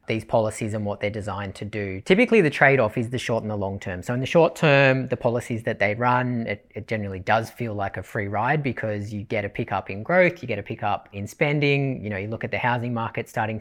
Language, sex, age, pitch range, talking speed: English, female, 30-49, 105-130 Hz, 260 wpm